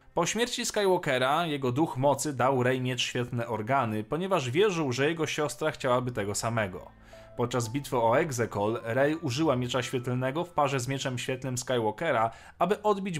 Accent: native